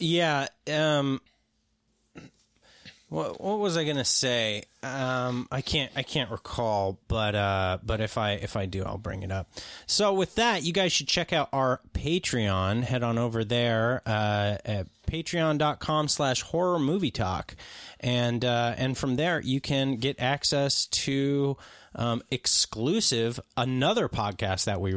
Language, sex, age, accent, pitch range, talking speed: English, male, 30-49, American, 115-155 Hz, 160 wpm